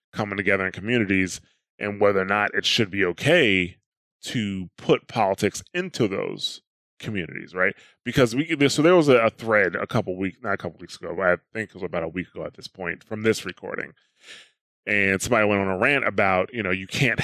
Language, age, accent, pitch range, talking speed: English, 20-39, American, 95-120 Hz, 210 wpm